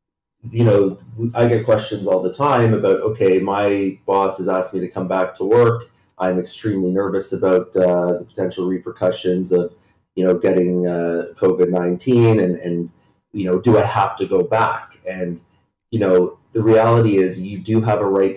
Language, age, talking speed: English, 30-49, 175 wpm